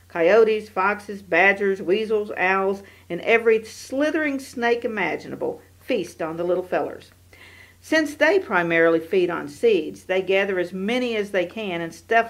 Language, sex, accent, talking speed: English, female, American, 145 wpm